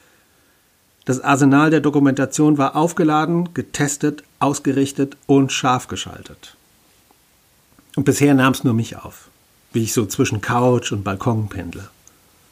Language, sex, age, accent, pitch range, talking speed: German, male, 50-69, German, 105-145 Hz, 125 wpm